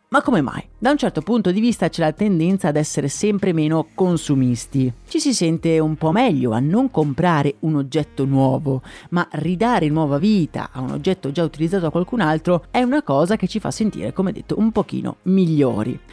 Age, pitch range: 30-49, 140-190 Hz